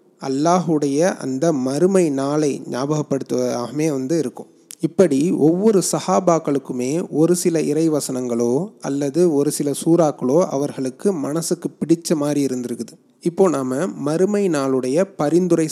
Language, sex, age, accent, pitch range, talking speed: Tamil, male, 30-49, native, 140-170 Hz, 105 wpm